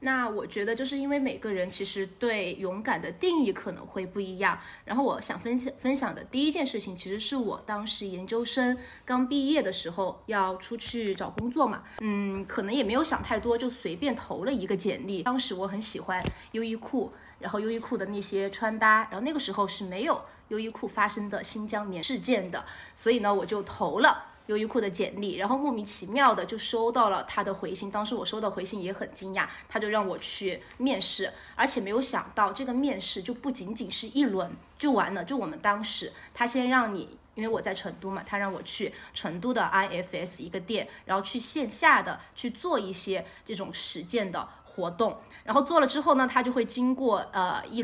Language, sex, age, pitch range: Chinese, female, 20-39, 195-250 Hz